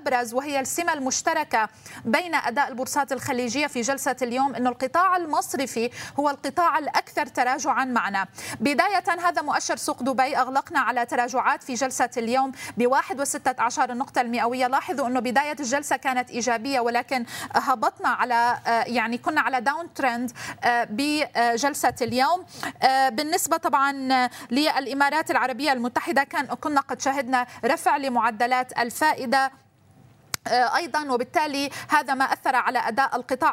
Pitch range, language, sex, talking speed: 240-290 Hz, Arabic, female, 125 wpm